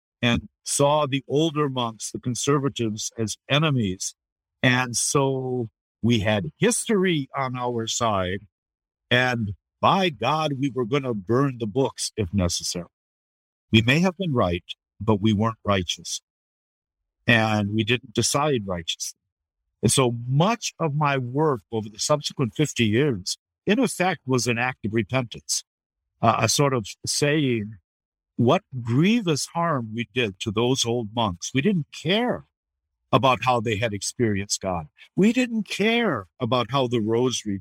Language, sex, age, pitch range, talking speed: English, male, 50-69, 105-145 Hz, 145 wpm